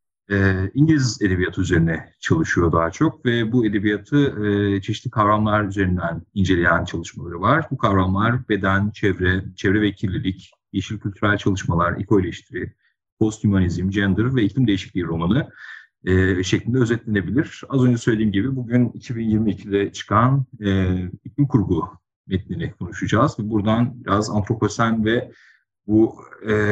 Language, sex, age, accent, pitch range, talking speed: Turkish, male, 40-59, native, 95-120 Hz, 115 wpm